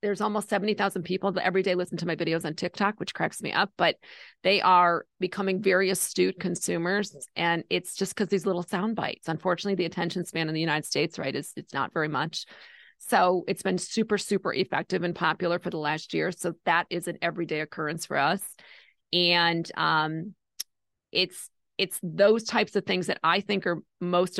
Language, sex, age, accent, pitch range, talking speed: English, female, 40-59, American, 170-195 Hz, 195 wpm